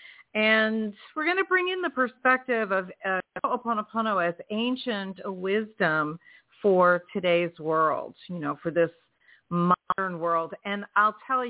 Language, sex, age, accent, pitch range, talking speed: English, female, 50-69, American, 180-235 Hz, 135 wpm